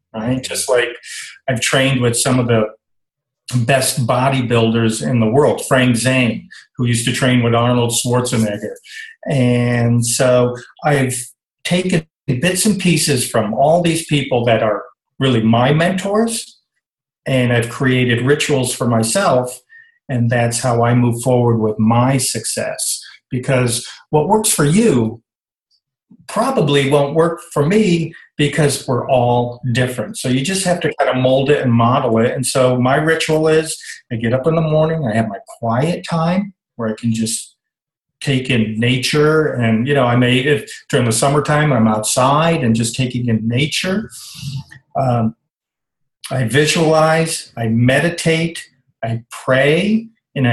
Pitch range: 120-155 Hz